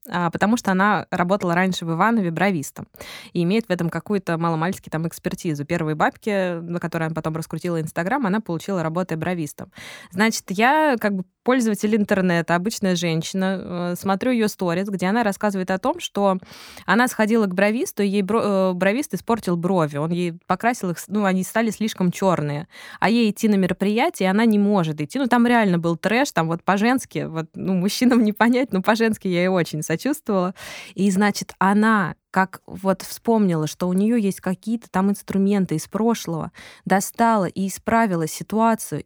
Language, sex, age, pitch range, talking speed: Russian, female, 20-39, 180-220 Hz, 170 wpm